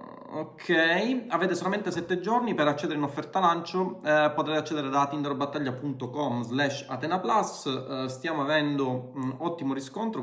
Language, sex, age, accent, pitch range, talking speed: Italian, male, 30-49, native, 130-180 Hz, 125 wpm